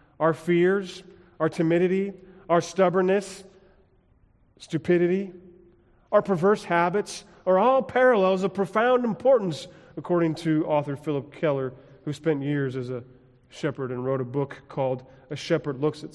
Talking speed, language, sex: 135 wpm, English, male